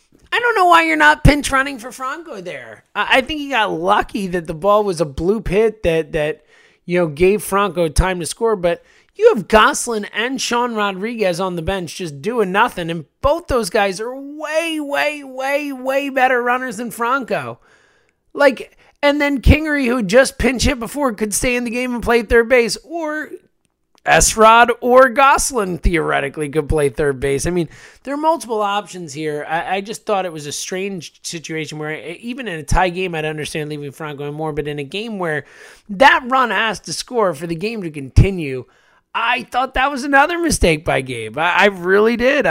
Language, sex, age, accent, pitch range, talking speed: English, male, 30-49, American, 165-255 Hz, 200 wpm